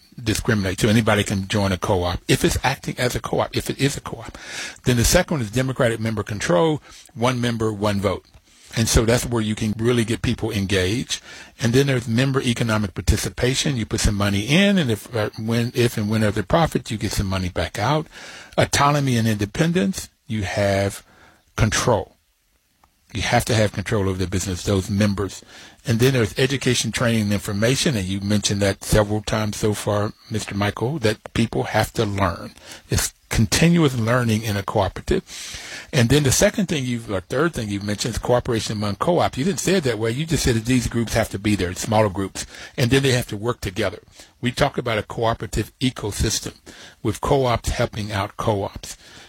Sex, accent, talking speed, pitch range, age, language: male, American, 195 wpm, 105-125 Hz, 60-79, English